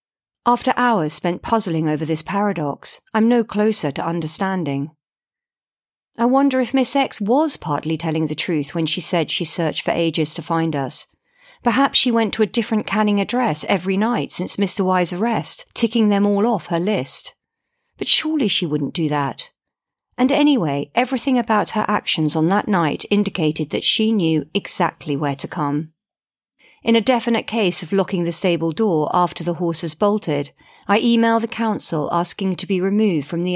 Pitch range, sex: 160-220 Hz, female